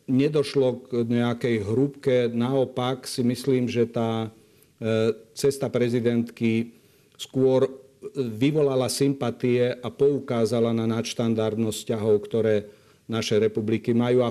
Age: 50-69